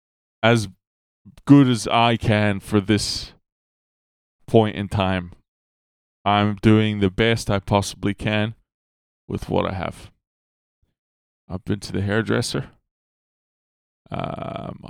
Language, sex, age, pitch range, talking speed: English, male, 20-39, 95-115 Hz, 110 wpm